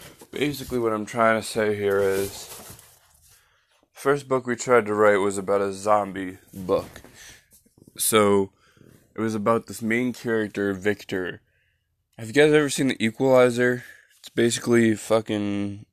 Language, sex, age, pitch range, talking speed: English, male, 20-39, 100-115 Hz, 140 wpm